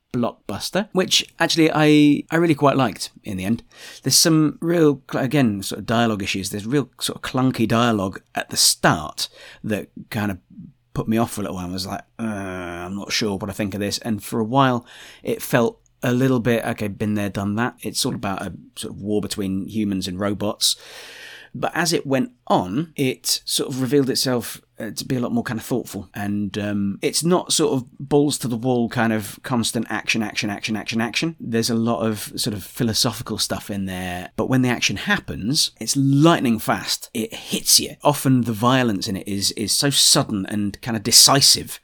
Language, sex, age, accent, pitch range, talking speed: English, male, 30-49, British, 105-130 Hz, 205 wpm